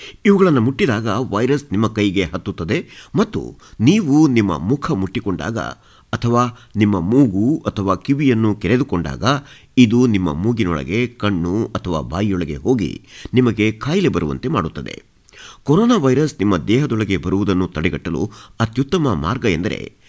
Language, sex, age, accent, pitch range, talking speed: Kannada, male, 50-69, native, 95-125 Hz, 110 wpm